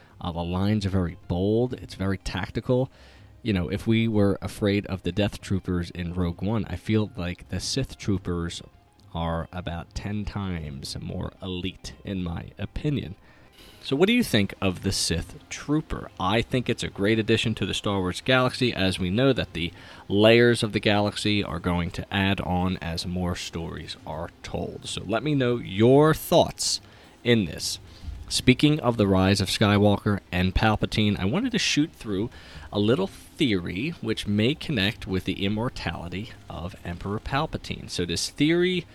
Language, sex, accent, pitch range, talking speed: English, male, American, 90-115 Hz, 175 wpm